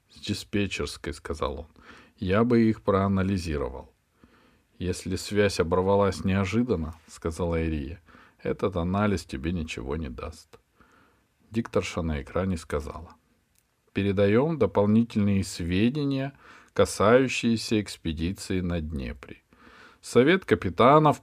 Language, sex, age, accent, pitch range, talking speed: Russian, male, 40-59, native, 85-115 Hz, 95 wpm